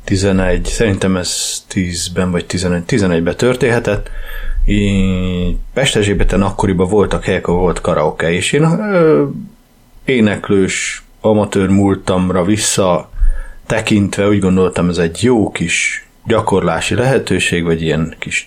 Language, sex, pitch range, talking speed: Hungarian, male, 90-105 Hz, 105 wpm